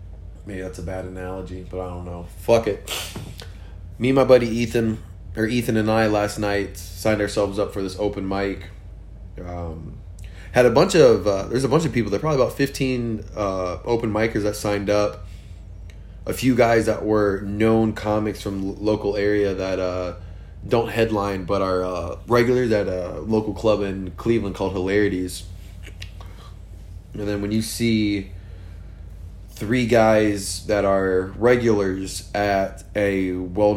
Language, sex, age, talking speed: English, male, 20-39, 160 wpm